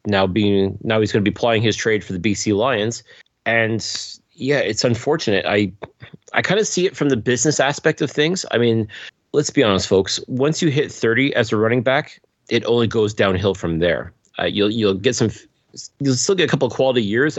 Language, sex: English, male